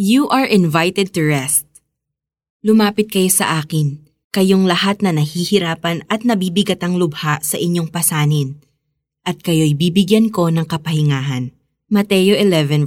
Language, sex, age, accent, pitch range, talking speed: Filipino, female, 20-39, native, 155-210 Hz, 130 wpm